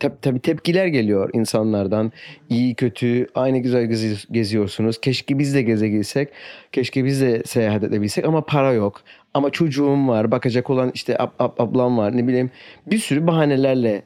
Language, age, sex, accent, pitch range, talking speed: Turkish, 40-59, male, native, 115-160 Hz, 160 wpm